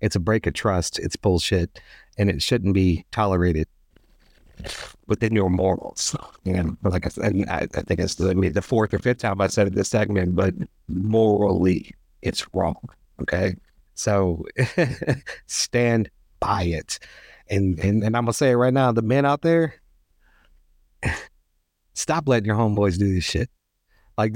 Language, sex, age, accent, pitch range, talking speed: English, male, 50-69, American, 95-130 Hz, 160 wpm